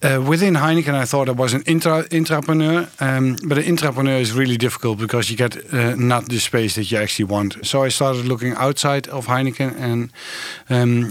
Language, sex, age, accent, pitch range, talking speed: English, male, 50-69, Dutch, 115-140 Hz, 195 wpm